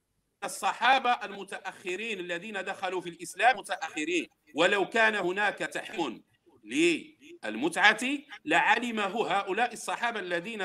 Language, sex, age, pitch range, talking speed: Arabic, male, 50-69, 200-260 Hz, 90 wpm